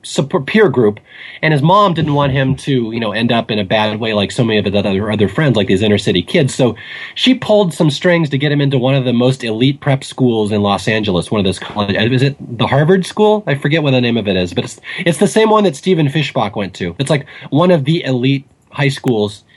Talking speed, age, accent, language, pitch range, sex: 265 wpm, 30-49, American, English, 115-155 Hz, male